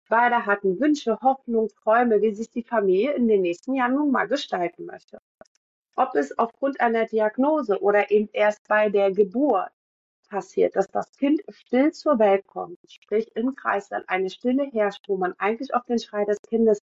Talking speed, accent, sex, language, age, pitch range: 180 wpm, German, female, German, 40-59, 210-270 Hz